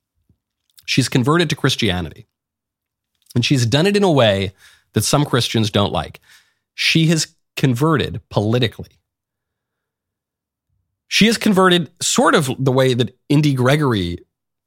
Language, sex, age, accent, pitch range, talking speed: English, male, 40-59, American, 100-145 Hz, 125 wpm